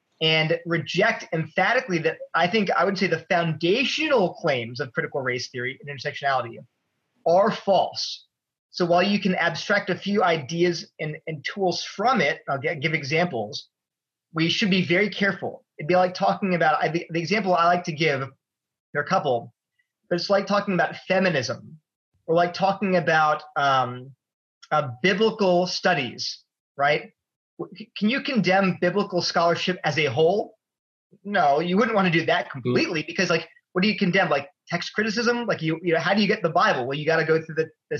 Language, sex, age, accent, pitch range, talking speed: English, male, 30-49, American, 160-195 Hz, 180 wpm